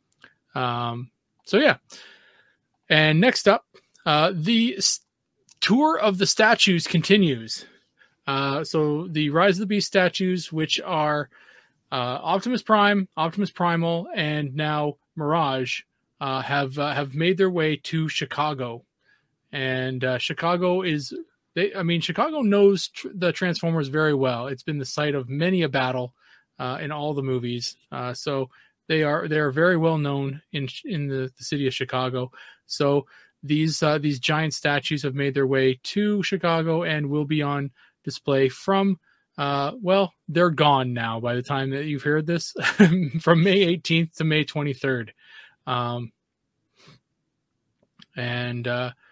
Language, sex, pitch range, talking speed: English, male, 135-170 Hz, 150 wpm